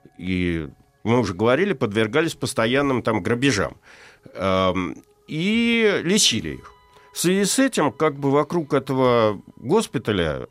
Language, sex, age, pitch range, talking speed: Russian, male, 50-69, 110-170 Hz, 115 wpm